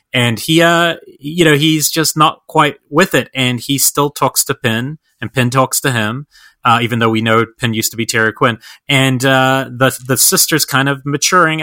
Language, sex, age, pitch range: English, male, 30-49, 110-145 Hz